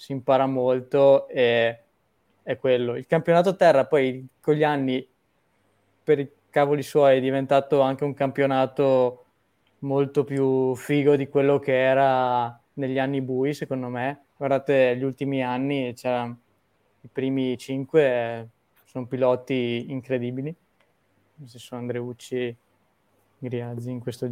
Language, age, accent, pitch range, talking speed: Italian, 20-39, native, 125-145 Hz, 125 wpm